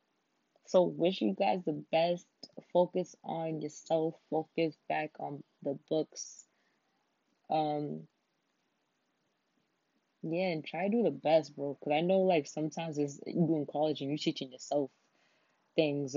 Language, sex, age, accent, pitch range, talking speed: English, female, 20-39, American, 150-190 Hz, 135 wpm